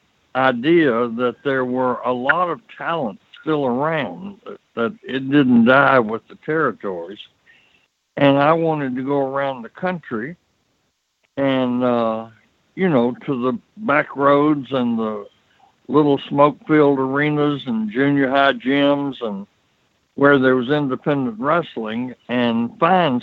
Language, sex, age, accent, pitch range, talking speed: English, male, 60-79, American, 120-145 Hz, 130 wpm